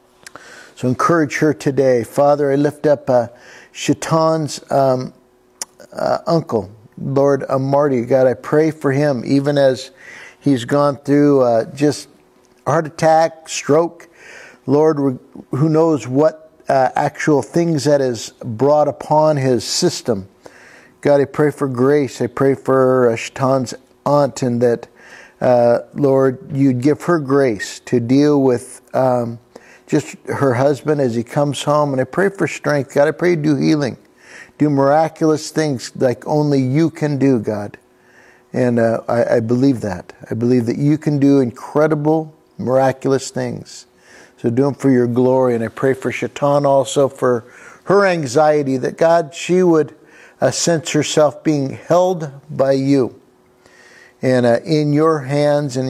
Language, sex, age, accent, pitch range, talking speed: English, male, 50-69, American, 125-150 Hz, 150 wpm